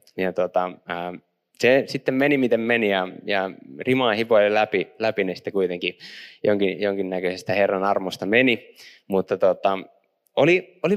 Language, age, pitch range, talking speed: Finnish, 20-39, 90-125 Hz, 130 wpm